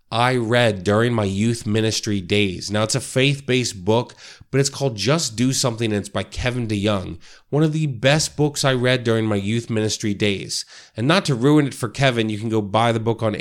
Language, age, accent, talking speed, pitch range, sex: English, 30-49, American, 220 wpm, 110-140 Hz, male